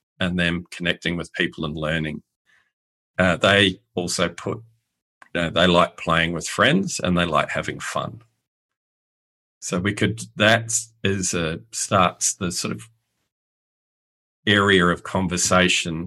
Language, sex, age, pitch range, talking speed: English, male, 50-69, 90-110 Hz, 135 wpm